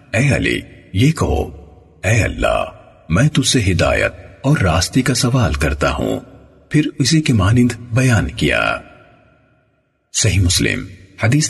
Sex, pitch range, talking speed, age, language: male, 85-130 Hz, 130 wpm, 50-69, Urdu